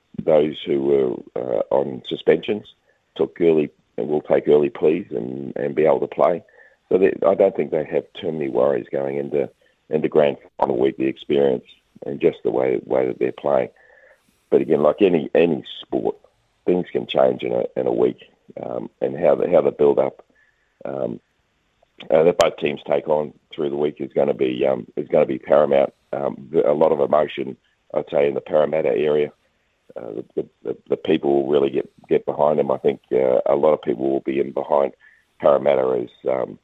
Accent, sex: Australian, male